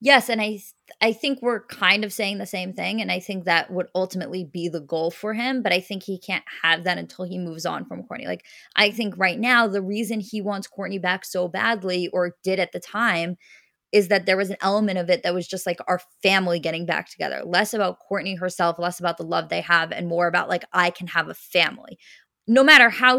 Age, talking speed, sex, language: 20-39, 245 wpm, female, English